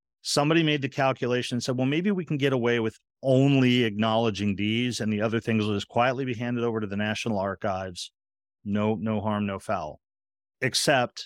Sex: male